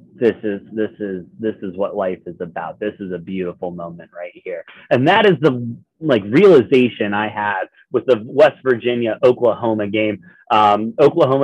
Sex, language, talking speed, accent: male, English, 175 wpm, American